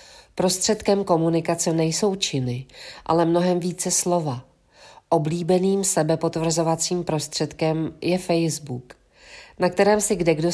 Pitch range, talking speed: 150-180 Hz, 95 wpm